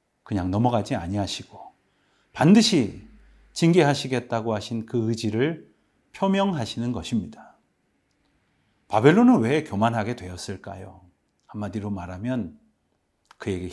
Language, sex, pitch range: Korean, male, 100-155 Hz